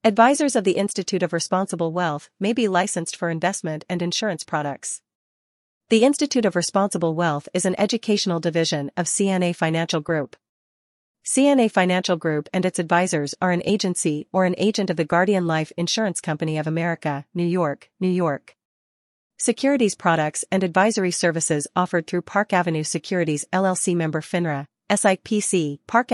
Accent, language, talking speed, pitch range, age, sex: American, English, 155 wpm, 160-195 Hz, 40-59, female